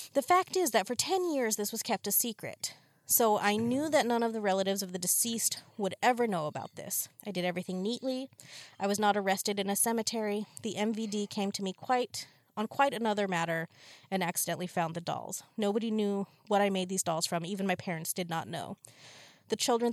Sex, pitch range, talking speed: female, 185-225 Hz, 210 wpm